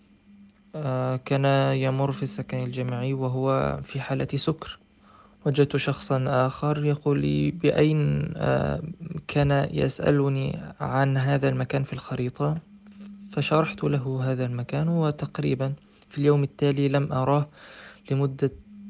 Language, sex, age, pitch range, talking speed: Arabic, male, 20-39, 135-165 Hz, 100 wpm